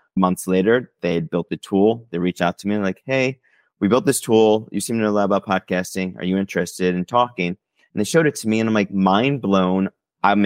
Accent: American